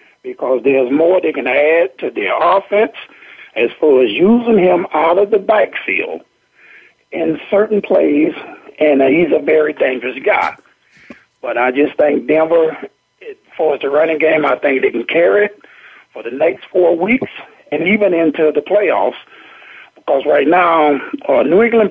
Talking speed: 160 wpm